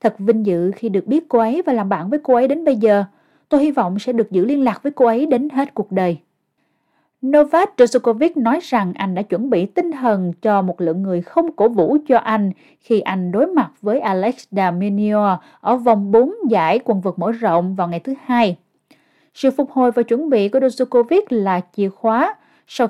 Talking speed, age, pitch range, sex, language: 215 wpm, 20-39, 195-265 Hz, female, Vietnamese